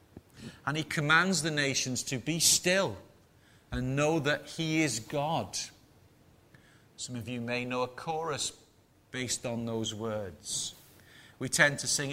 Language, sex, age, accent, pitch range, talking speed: English, male, 40-59, British, 125-160 Hz, 145 wpm